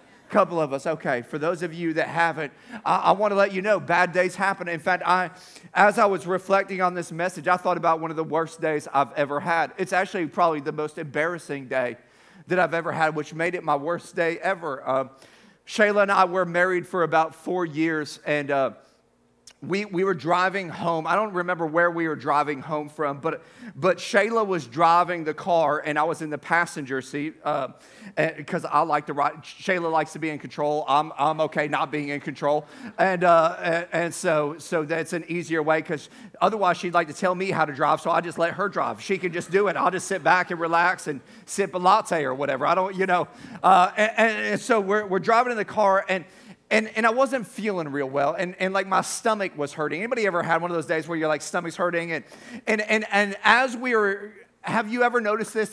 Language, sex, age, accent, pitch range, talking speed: English, male, 40-59, American, 160-195 Hz, 235 wpm